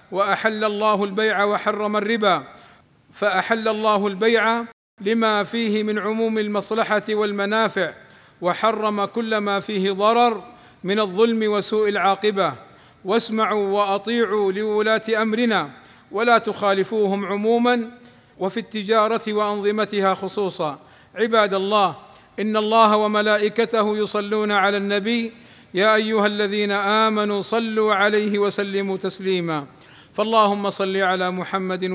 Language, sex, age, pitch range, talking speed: Arabic, male, 50-69, 195-215 Hz, 100 wpm